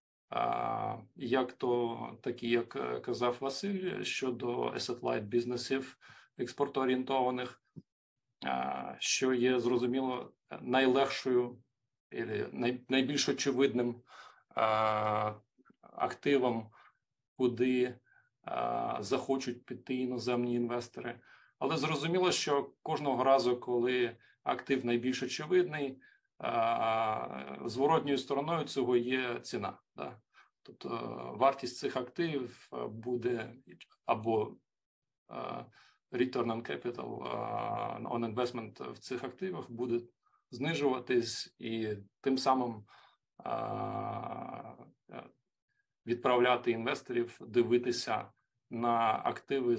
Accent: native